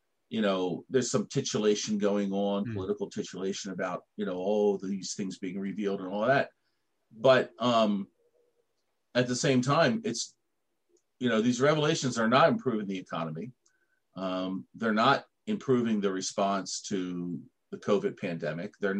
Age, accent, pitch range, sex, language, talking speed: 40-59, American, 90-130 Hz, male, Turkish, 150 wpm